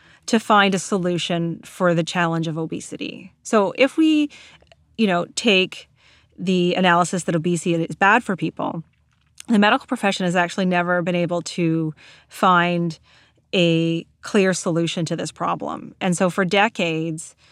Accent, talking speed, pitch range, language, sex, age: American, 145 wpm, 170-190 Hz, English, female, 30-49